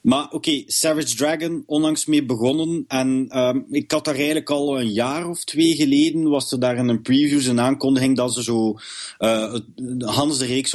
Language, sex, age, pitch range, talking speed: English, male, 30-49, 110-130 Hz, 185 wpm